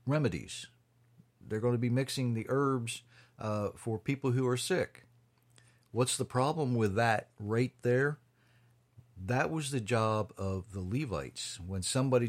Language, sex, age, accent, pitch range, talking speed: English, male, 50-69, American, 110-130 Hz, 145 wpm